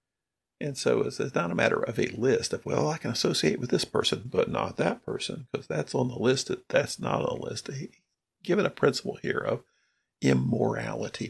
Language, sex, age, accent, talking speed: English, male, 50-69, American, 210 wpm